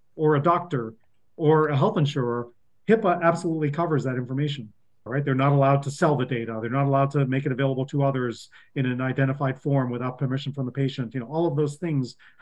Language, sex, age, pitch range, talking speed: English, male, 40-59, 135-170 Hz, 215 wpm